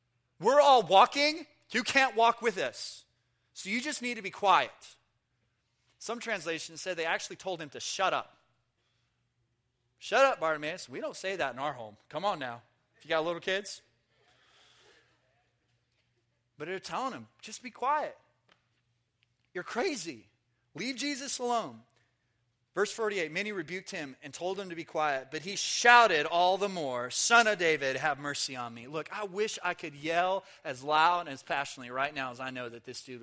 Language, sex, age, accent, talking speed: English, male, 30-49, American, 175 wpm